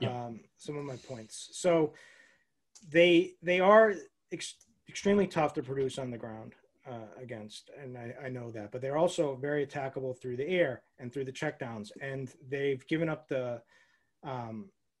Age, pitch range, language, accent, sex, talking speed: 30-49, 130-150 Hz, English, American, male, 170 wpm